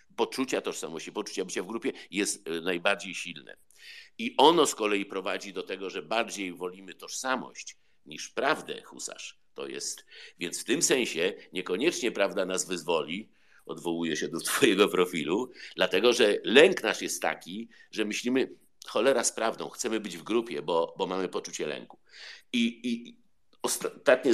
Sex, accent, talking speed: male, native, 150 wpm